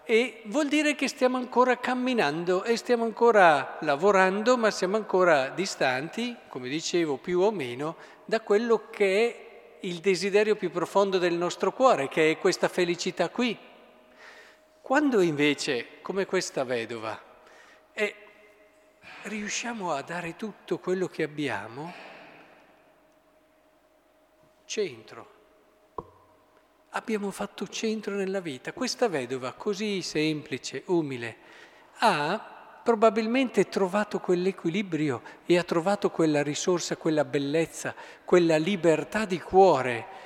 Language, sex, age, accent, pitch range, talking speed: Italian, male, 50-69, native, 175-225 Hz, 110 wpm